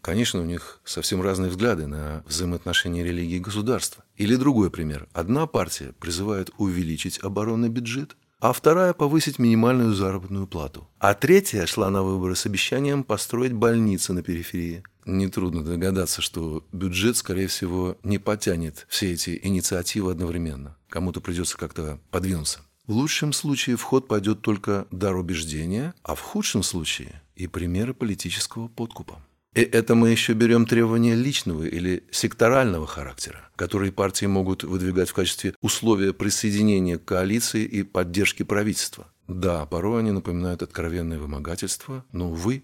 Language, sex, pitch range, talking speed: Russian, male, 85-110 Hz, 140 wpm